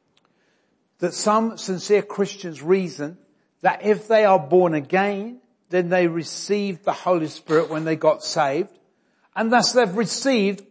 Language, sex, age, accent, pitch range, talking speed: English, male, 60-79, British, 185-230 Hz, 140 wpm